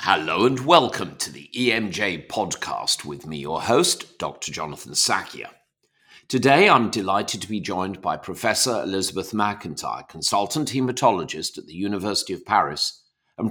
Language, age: English, 50-69